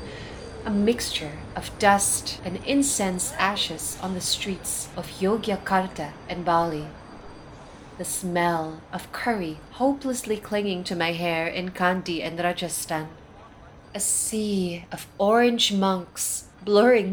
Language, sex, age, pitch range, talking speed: German, female, 30-49, 160-210 Hz, 115 wpm